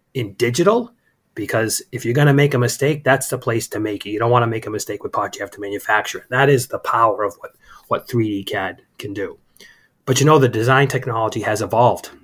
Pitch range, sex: 115-135 Hz, male